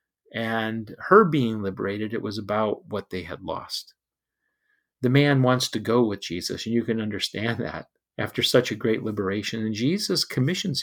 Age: 40-59